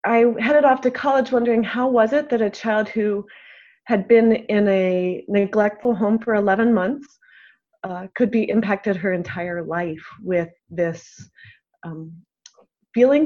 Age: 30-49